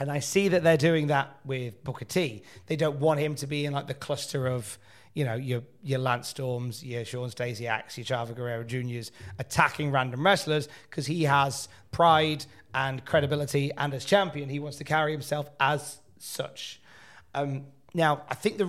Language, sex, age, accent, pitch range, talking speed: English, male, 30-49, British, 120-155 Hz, 185 wpm